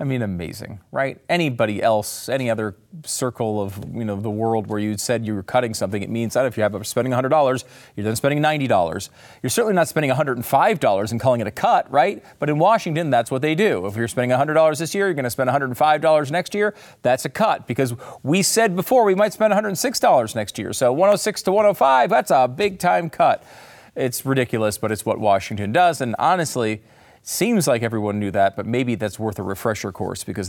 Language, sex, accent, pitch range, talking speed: English, male, American, 115-180 Hz, 220 wpm